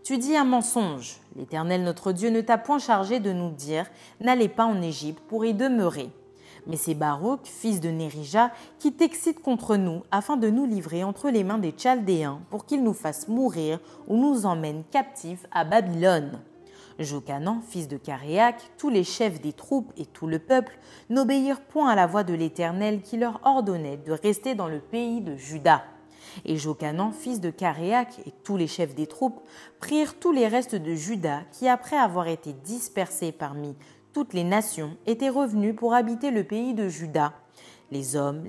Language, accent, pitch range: French, French, 160-235 Hz